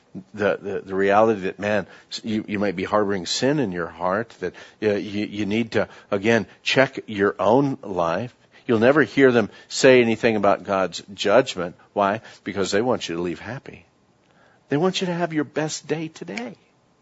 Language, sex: English, male